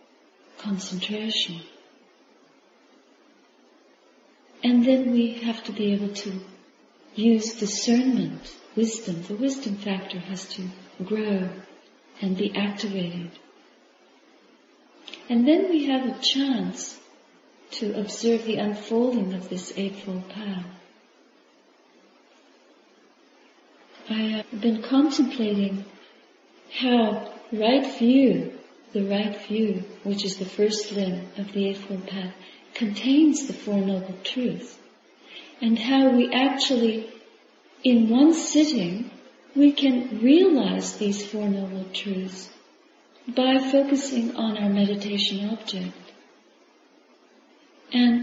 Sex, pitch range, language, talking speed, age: female, 200-265 Hz, English, 100 wpm, 40-59